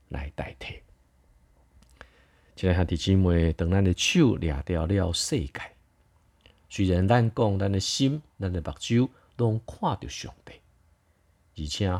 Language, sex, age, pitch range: Chinese, male, 50-69, 75-100 Hz